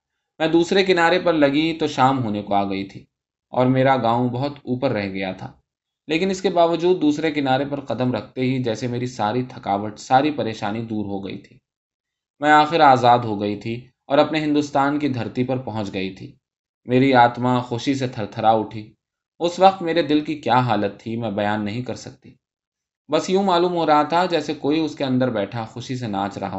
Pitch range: 110-150 Hz